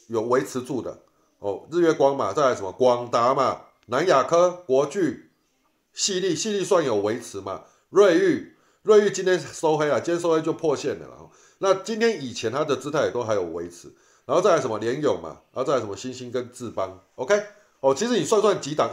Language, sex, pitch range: Chinese, male, 125-200 Hz